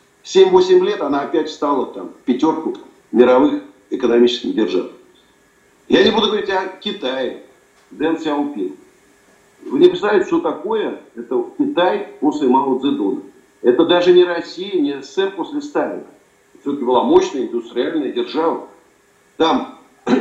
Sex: male